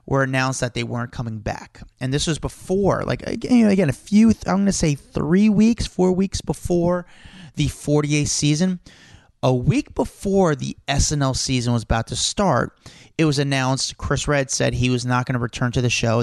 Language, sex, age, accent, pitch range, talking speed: English, male, 30-49, American, 120-150 Hz, 195 wpm